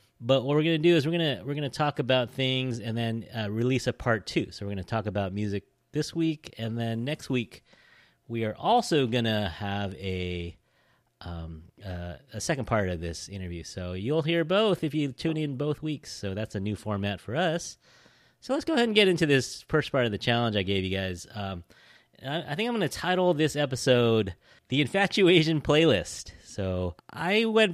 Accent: American